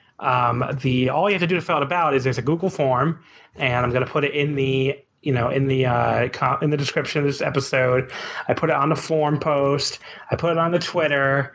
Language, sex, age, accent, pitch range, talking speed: English, male, 30-49, American, 125-160 Hz, 255 wpm